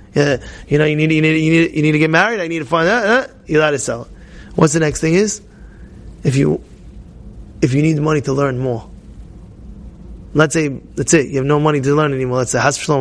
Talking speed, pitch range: 255 wpm, 150-190 Hz